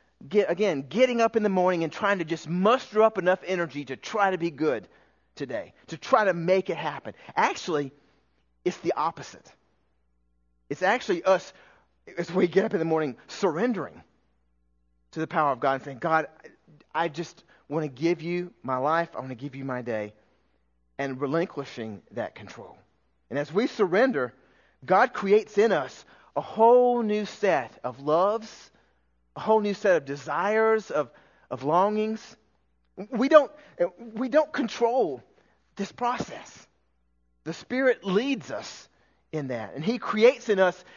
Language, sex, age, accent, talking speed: English, male, 30-49, American, 160 wpm